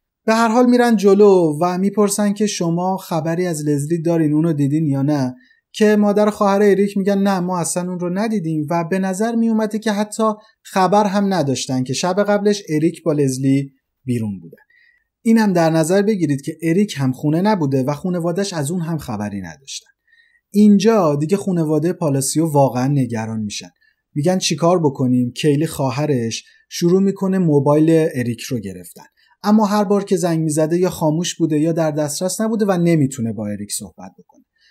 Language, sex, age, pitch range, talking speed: Persian, male, 30-49, 140-200 Hz, 170 wpm